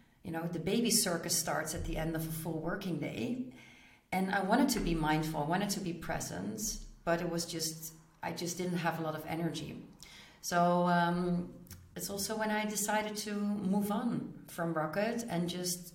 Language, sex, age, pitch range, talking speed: English, female, 40-59, 165-190 Hz, 190 wpm